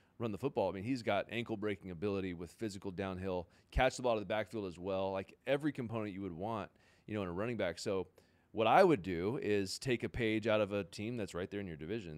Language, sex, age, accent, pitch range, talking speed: English, male, 30-49, American, 100-135 Hz, 255 wpm